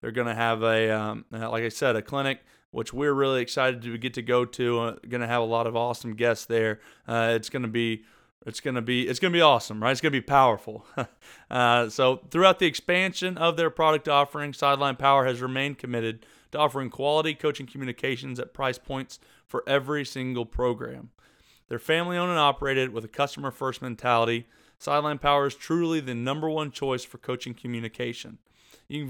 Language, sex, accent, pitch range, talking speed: English, male, American, 120-145 Hz, 190 wpm